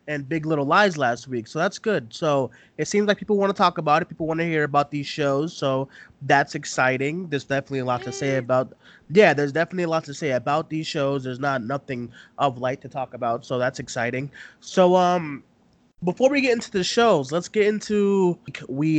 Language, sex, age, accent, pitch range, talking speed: English, male, 20-39, American, 130-165 Hz, 220 wpm